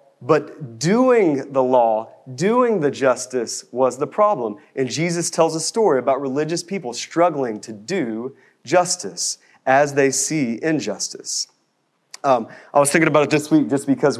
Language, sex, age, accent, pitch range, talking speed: English, male, 30-49, American, 130-170 Hz, 150 wpm